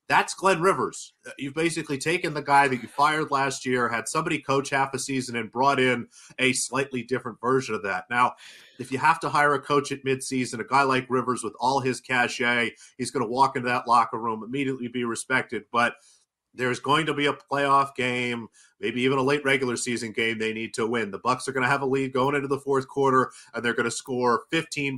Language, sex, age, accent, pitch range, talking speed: English, male, 40-59, American, 120-135 Hz, 230 wpm